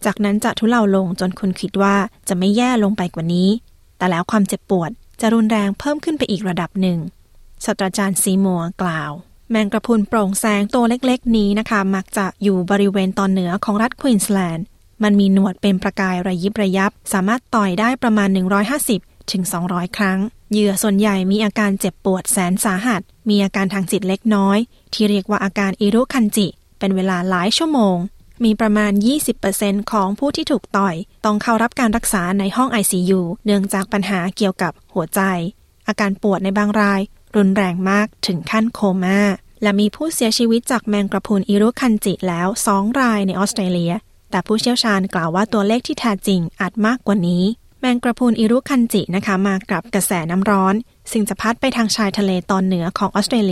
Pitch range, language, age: 190-220 Hz, Thai, 20-39